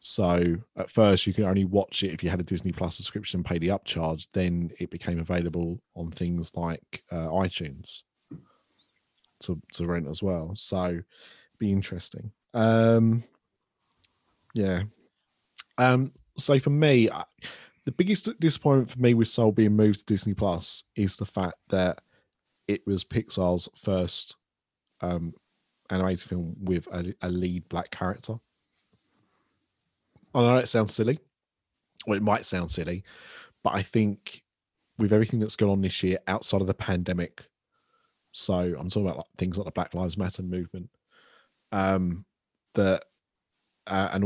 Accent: British